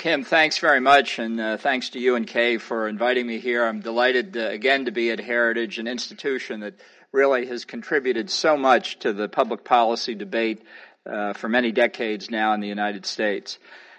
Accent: American